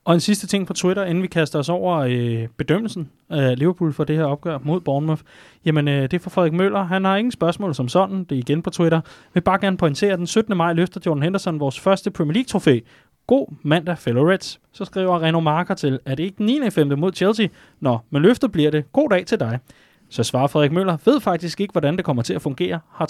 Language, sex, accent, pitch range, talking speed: Danish, male, native, 140-185 Hz, 245 wpm